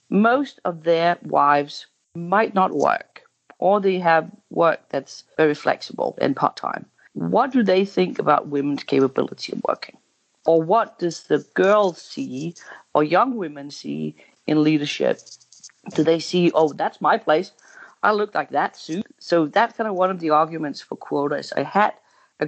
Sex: female